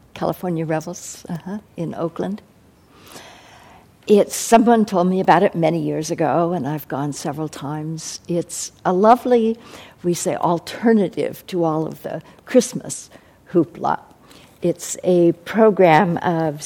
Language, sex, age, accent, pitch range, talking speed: English, female, 60-79, American, 160-200 Hz, 125 wpm